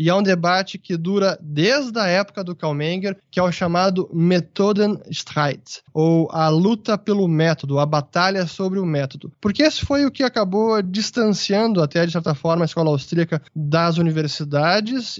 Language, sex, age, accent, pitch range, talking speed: English, male, 20-39, Brazilian, 160-200 Hz, 160 wpm